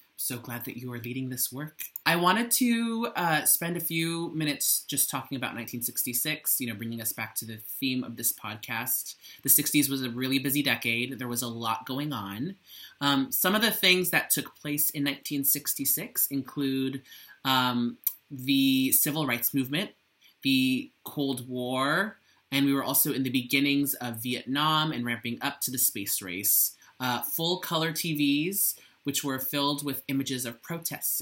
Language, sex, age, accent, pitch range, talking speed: English, male, 30-49, American, 120-150 Hz, 175 wpm